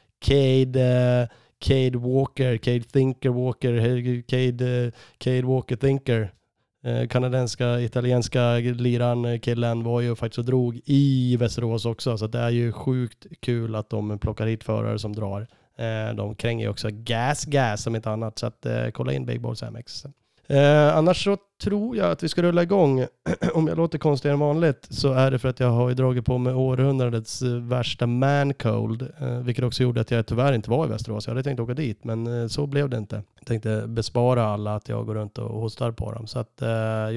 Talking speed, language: 200 wpm, Swedish